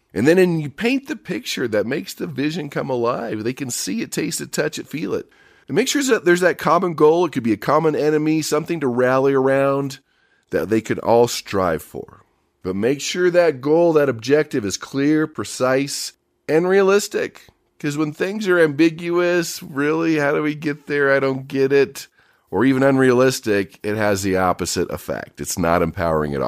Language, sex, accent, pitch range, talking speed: English, male, American, 115-160 Hz, 195 wpm